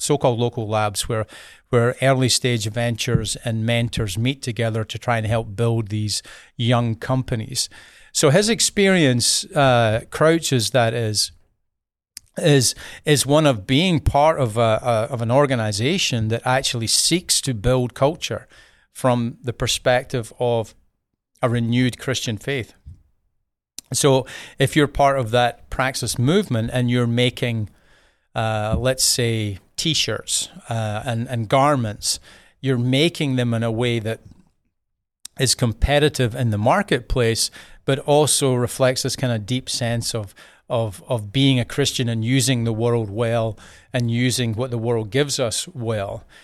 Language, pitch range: English, 115-130 Hz